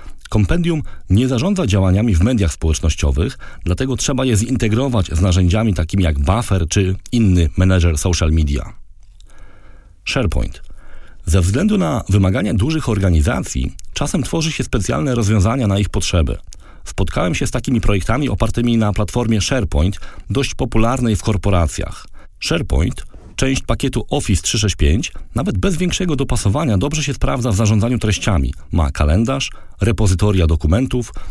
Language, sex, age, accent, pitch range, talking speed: Polish, male, 40-59, native, 90-120 Hz, 130 wpm